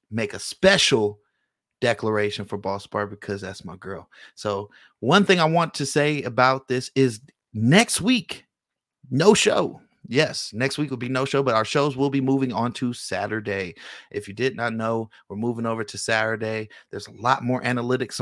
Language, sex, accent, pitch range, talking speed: English, male, American, 110-135 Hz, 185 wpm